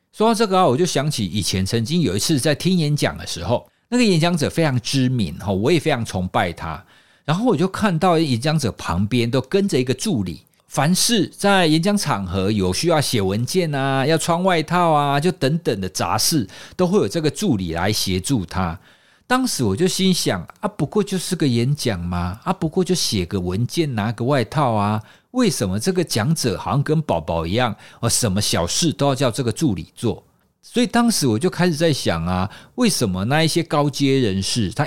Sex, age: male, 50-69